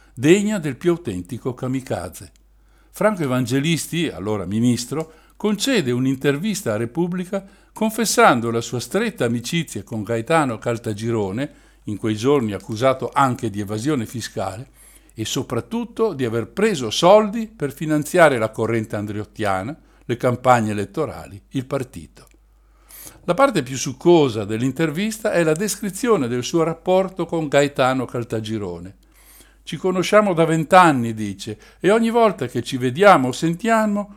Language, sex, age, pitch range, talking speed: Italian, male, 60-79, 115-175 Hz, 125 wpm